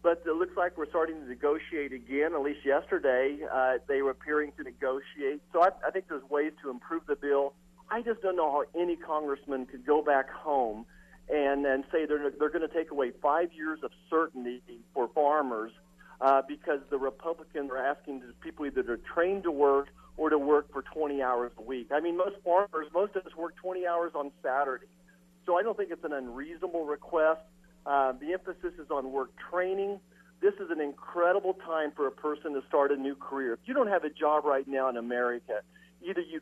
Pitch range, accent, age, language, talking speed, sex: 135-175 Hz, American, 50-69, English, 210 wpm, male